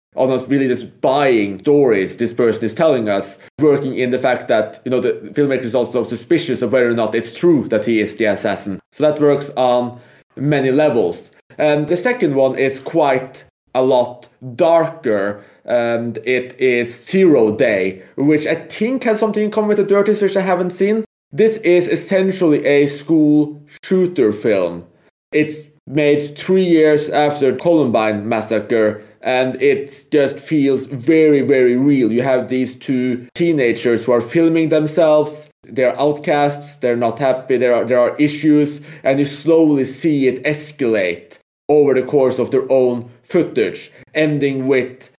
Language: English